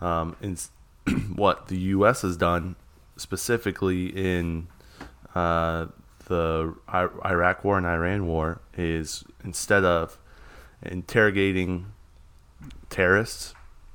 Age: 20-39